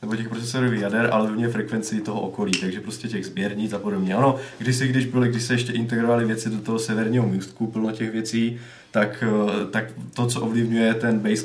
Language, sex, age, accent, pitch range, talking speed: Czech, male, 20-39, native, 100-120 Hz, 205 wpm